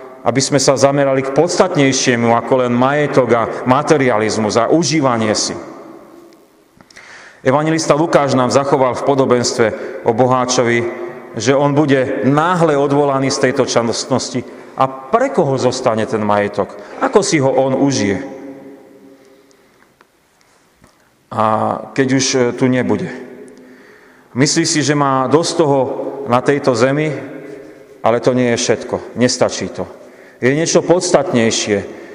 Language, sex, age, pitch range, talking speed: Slovak, male, 40-59, 120-145 Hz, 120 wpm